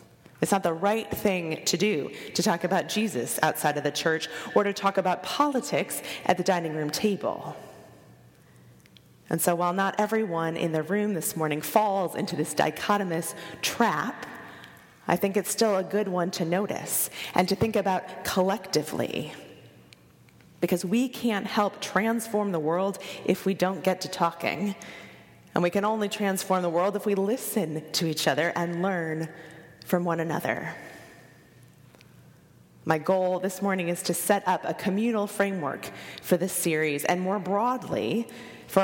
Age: 30-49